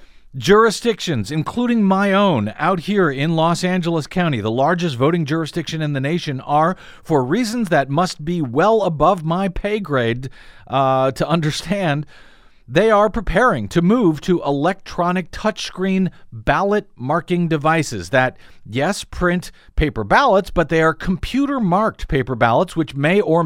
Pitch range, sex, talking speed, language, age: 145-190 Hz, male, 145 wpm, English, 50-69